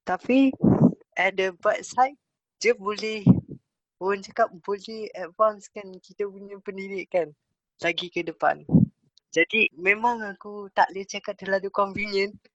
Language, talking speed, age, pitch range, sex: Malay, 120 wpm, 20-39, 175-210 Hz, female